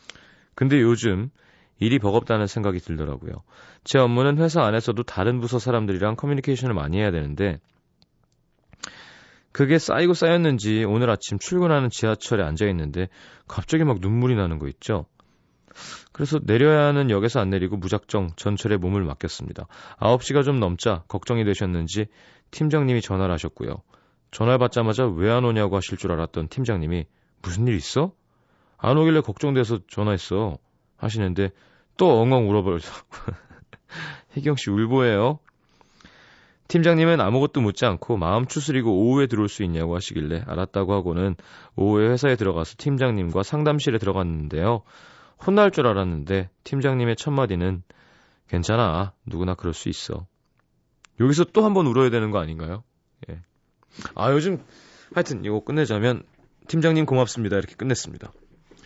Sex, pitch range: male, 95-130 Hz